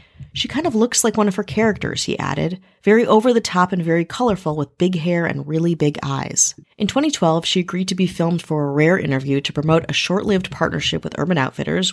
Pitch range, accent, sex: 145-195 Hz, American, female